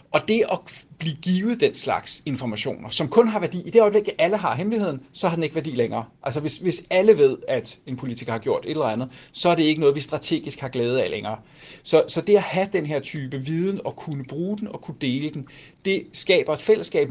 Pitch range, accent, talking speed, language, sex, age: 135-180 Hz, native, 245 wpm, Danish, male, 60-79